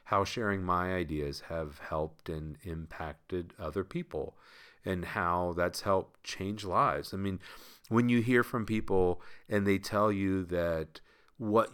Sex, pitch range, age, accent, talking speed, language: male, 80-105 Hz, 40-59, American, 150 wpm, English